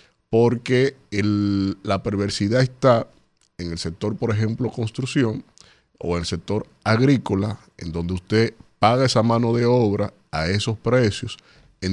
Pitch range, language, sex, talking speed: 100-125 Hz, Spanish, male, 140 wpm